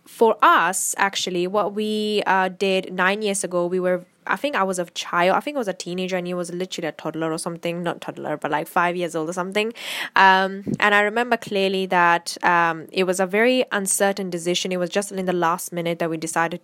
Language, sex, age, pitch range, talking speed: English, female, 10-29, 170-195 Hz, 230 wpm